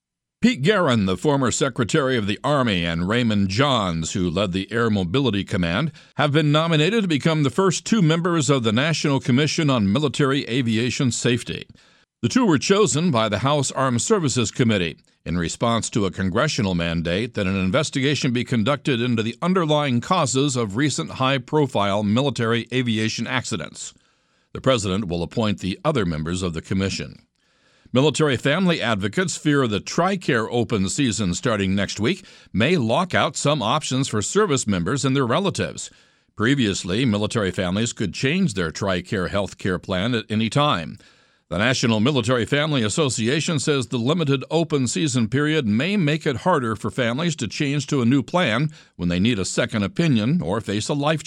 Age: 60-79